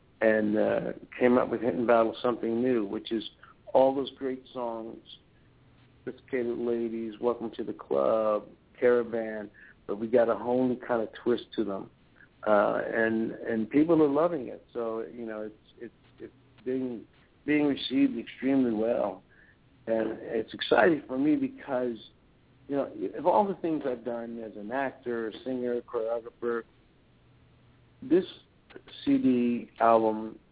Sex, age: male, 60-79